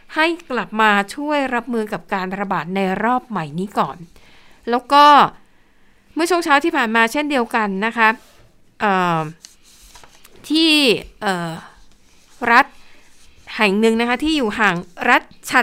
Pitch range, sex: 195-255 Hz, female